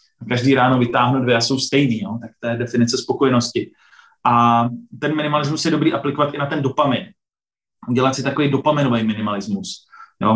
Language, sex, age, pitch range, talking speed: Slovak, male, 20-39, 120-140 Hz, 170 wpm